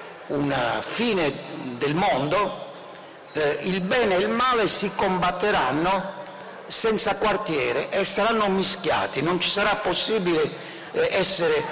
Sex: male